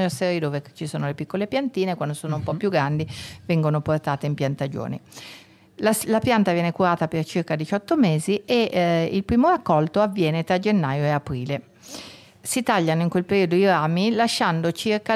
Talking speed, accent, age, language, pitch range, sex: 175 wpm, native, 50-69, Italian, 155-200 Hz, female